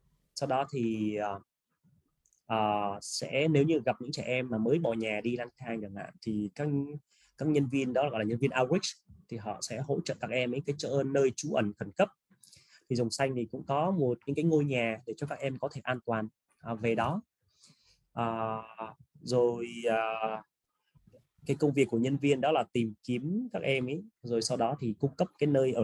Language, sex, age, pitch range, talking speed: English, male, 20-39, 115-140 Hz, 215 wpm